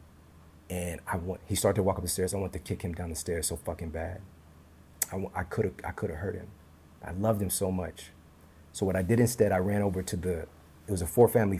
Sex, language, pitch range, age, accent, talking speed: male, English, 80-100 Hz, 30-49, American, 255 wpm